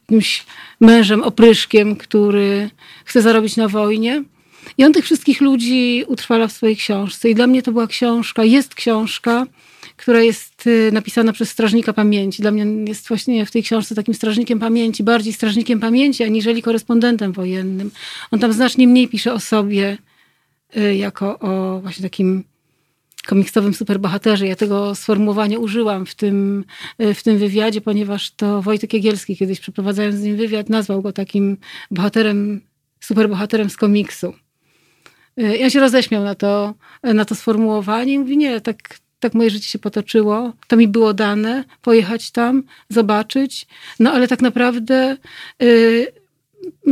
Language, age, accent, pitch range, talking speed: Polish, 40-59, native, 205-235 Hz, 145 wpm